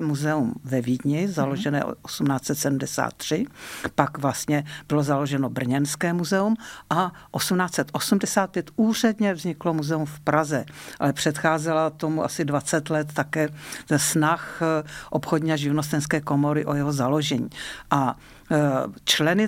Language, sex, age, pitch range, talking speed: Slovak, female, 50-69, 140-165 Hz, 110 wpm